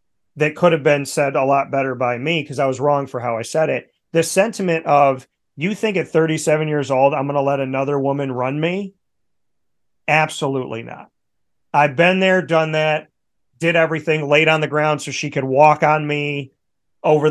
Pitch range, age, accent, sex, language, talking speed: 135-160 Hz, 30-49, American, male, English, 195 wpm